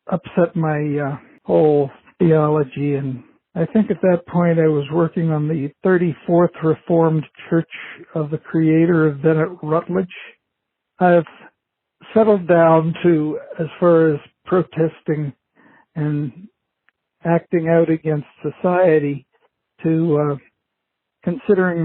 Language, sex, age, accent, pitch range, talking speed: English, male, 60-79, American, 150-180 Hz, 115 wpm